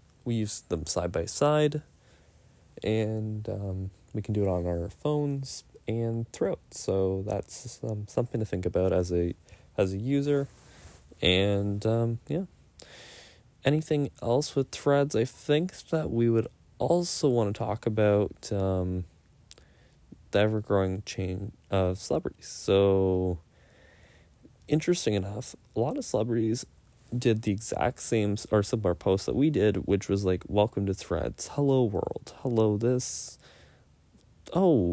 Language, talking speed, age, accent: English, 140 wpm, 20-39, American